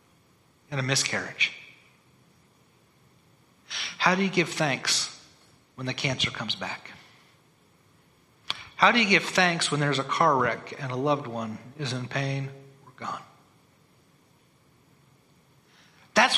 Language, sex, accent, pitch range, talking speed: English, male, American, 125-160 Hz, 120 wpm